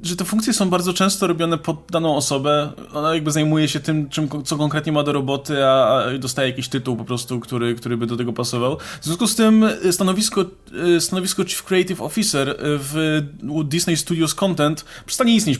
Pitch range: 135-165 Hz